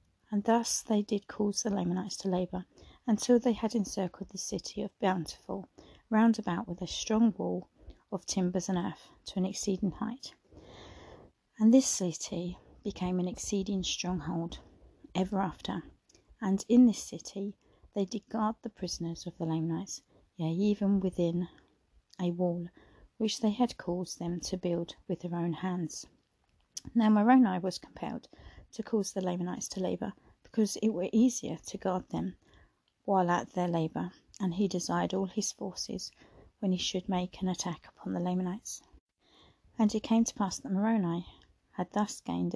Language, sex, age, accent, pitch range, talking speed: English, female, 30-49, British, 175-215 Hz, 160 wpm